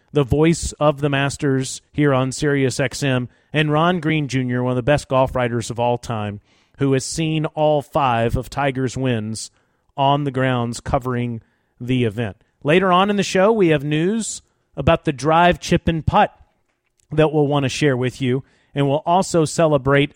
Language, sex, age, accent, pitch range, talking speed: English, male, 40-59, American, 125-155 Hz, 180 wpm